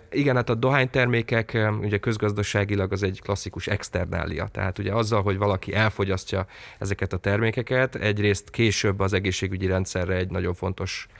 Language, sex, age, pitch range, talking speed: Hungarian, male, 30-49, 95-110 Hz, 140 wpm